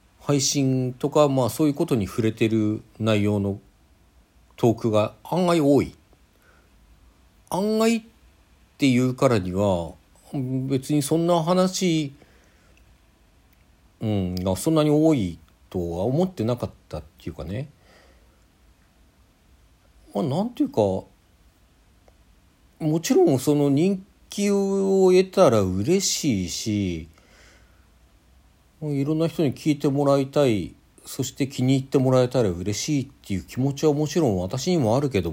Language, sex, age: Japanese, male, 60-79